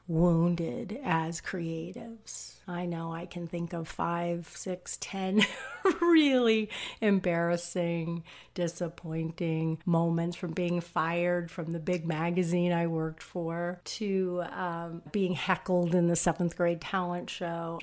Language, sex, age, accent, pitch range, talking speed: English, female, 40-59, American, 170-225 Hz, 120 wpm